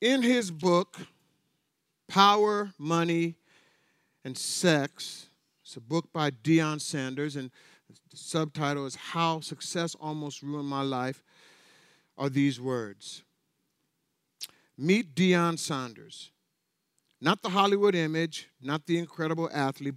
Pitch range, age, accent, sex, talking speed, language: 145-185 Hz, 50-69, American, male, 110 wpm, English